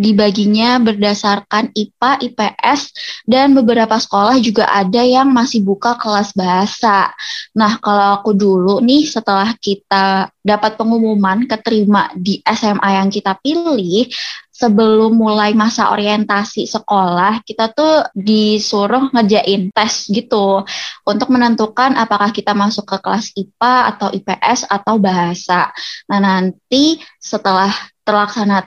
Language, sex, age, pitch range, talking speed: Indonesian, female, 20-39, 200-235 Hz, 115 wpm